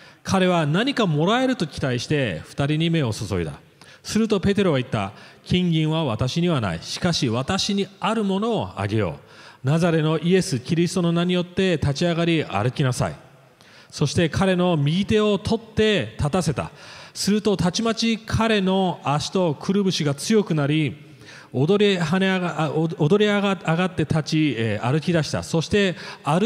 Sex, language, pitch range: male, English, 145-195 Hz